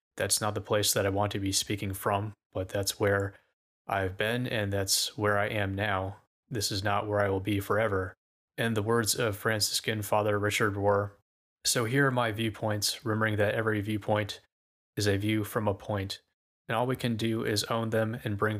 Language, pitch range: English, 100-110 Hz